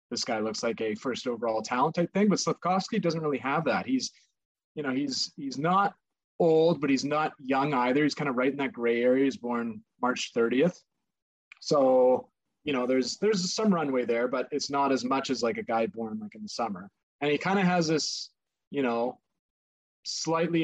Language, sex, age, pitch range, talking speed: English, male, 30-49, 125-165 Hz, 205 wpm